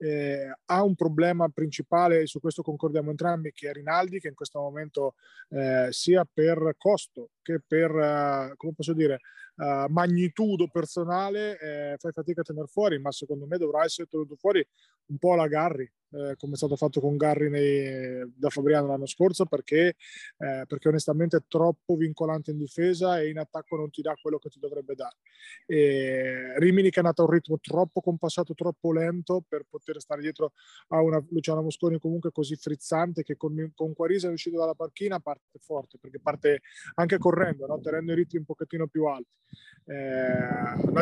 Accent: native